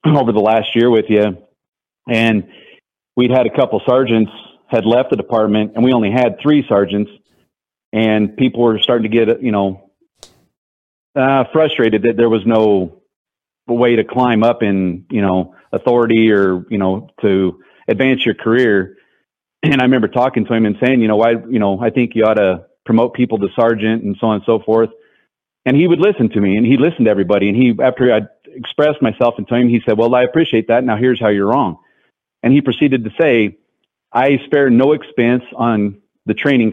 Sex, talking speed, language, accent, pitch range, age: male, 200 wpm, English, American, 105-125 Hz, 40-59